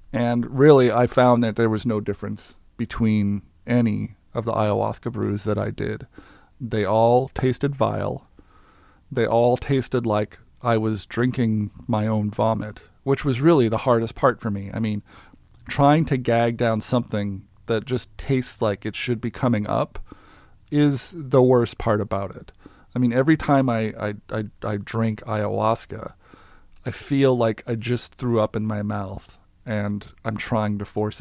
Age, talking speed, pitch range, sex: 40-59, 165 wpm, 105-130 Hz, male